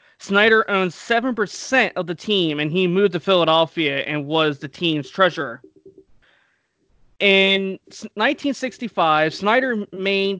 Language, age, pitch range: English, 20-39, 160-210 Hz